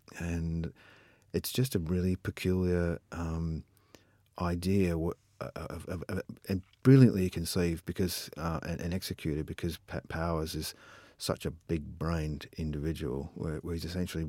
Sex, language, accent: male, English, Australian